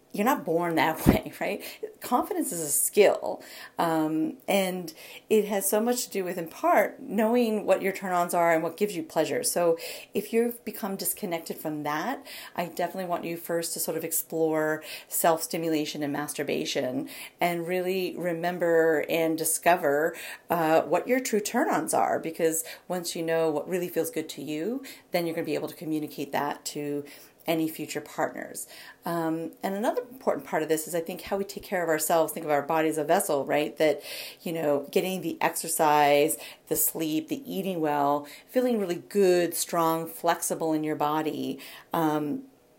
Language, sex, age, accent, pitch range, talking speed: English, female, 40-59, American, 160-195 Hz, 180 wpm